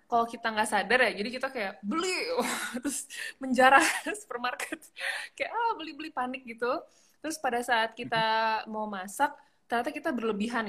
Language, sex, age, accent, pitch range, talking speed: Indonesian, female, 20-39, native, 200-250 Hz, 150 wpm